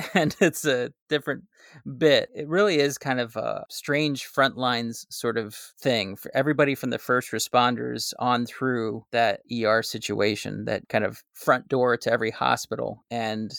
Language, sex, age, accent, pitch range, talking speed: English, male, 30-49, American, 115-135 Hz, 165 wpm